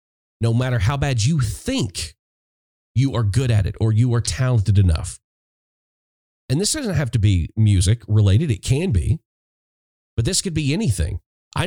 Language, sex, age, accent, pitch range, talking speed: English, male, 40-59, American, 105-135 Hz, 170 wpm